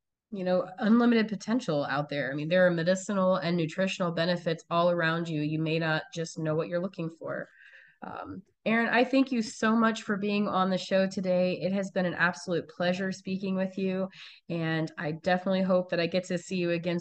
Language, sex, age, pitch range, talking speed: English, female, 20-39, 160-200 Hz, 210 wpm